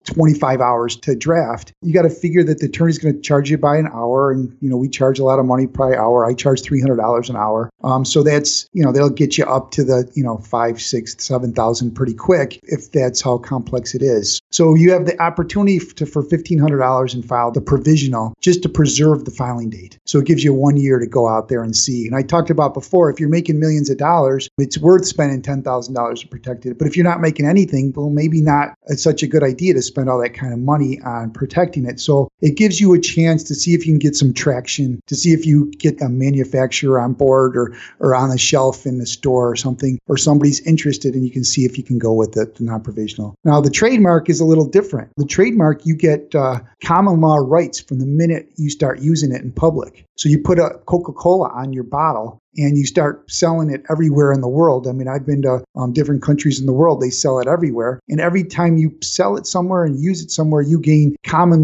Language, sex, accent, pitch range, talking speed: English, male, American, 125-160 Hz, 245 wpm